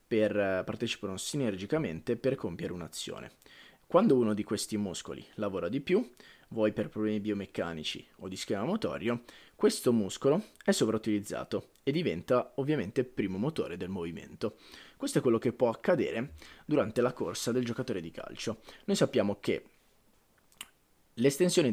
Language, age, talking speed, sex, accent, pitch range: Italian, 20-39, 140 wpm, male, native, 105-120 Hz